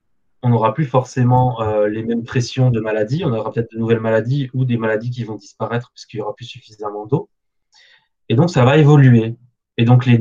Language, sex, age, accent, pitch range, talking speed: French, male, 20-39, French, 115-140 Hz, 210 wpm